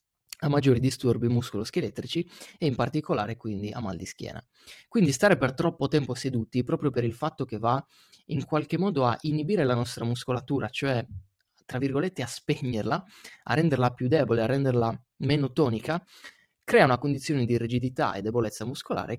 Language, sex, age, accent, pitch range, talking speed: Italian, male, 30-49, native, 115-145 Hz, 165 wpm